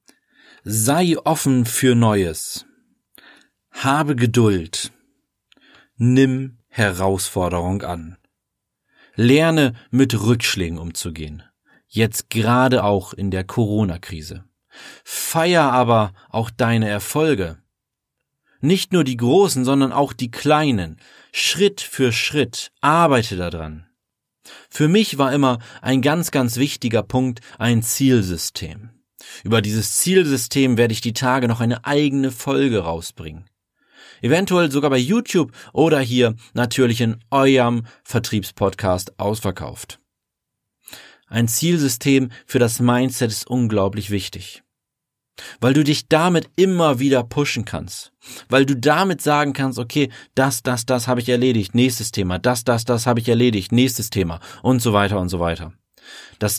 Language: German